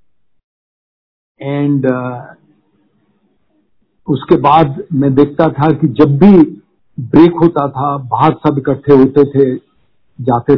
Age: 50-69